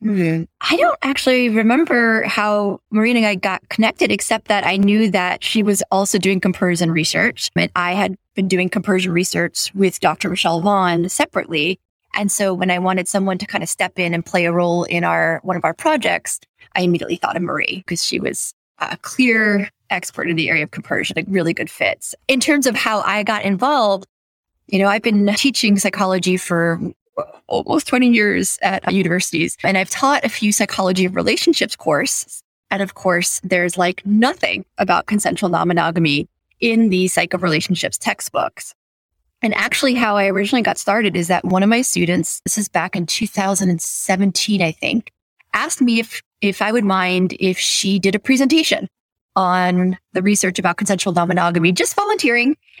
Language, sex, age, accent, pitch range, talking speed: English, female, 20-39, American, 180-220 Hz, 180 wpm